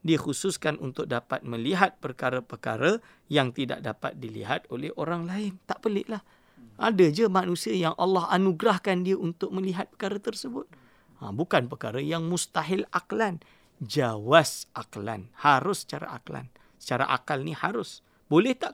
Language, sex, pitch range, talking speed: English, male, 120-180 Hz, 140 wpm